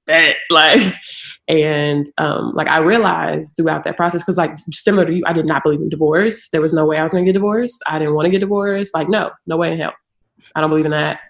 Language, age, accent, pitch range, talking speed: English, 20-39, American, 150-170 Hz, 250 wpm